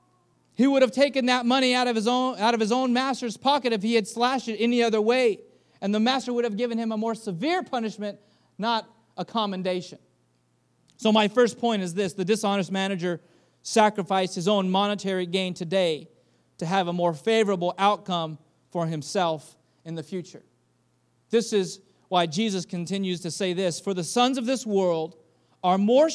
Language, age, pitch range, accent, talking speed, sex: English, 30-49, 195-255 Hz, American, 185 wpm, male